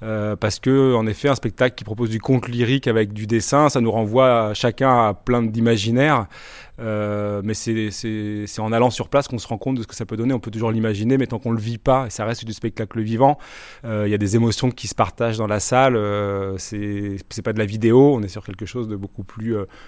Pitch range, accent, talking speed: 110-130 Hz, French, 265 wpm